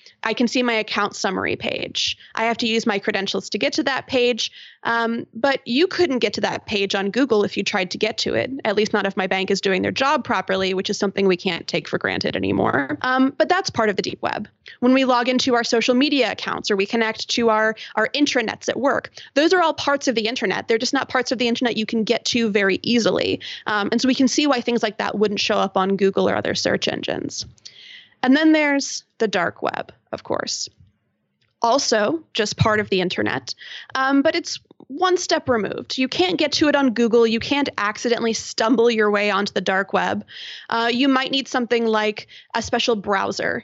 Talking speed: 225 wpm